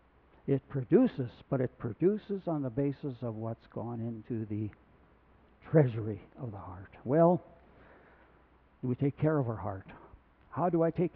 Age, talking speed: 60-79, 150 wpm